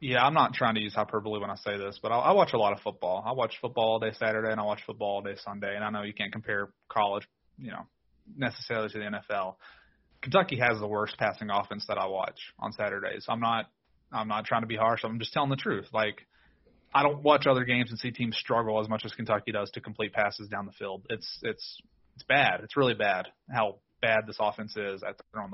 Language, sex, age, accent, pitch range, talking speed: English, male, 30-49, American, 105-120 Hz, 245 wpm